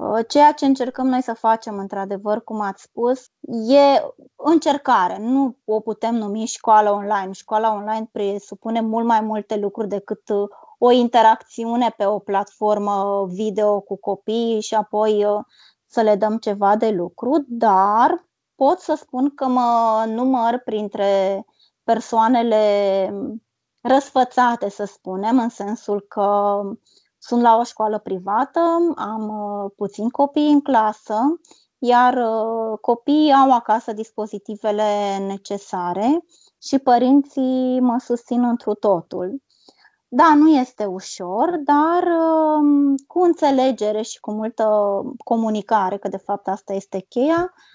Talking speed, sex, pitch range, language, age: 120 wpm, female, 210-270 Hz, Romanian, 20-39